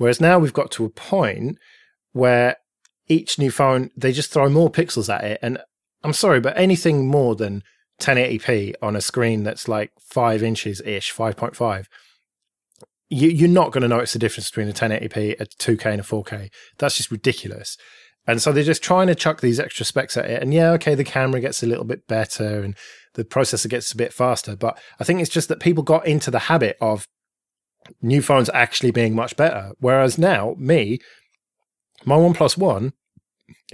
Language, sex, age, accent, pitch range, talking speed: English, male, 20-39, British, 115-150 Hz, 185 wpm